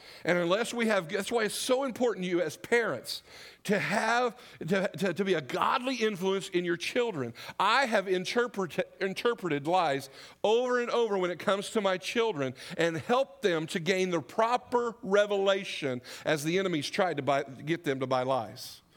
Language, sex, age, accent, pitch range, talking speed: English, male, 50-69, American, 170-215 Hz, 185 wpm